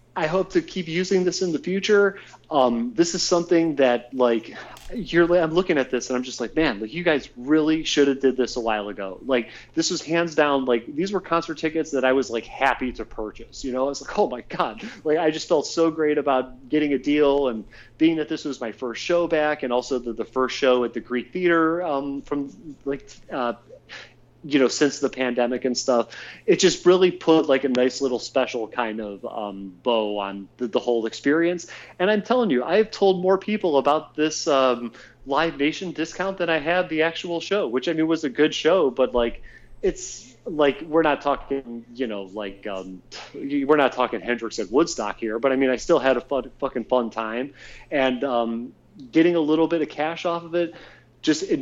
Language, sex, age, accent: English, male, 30-49, American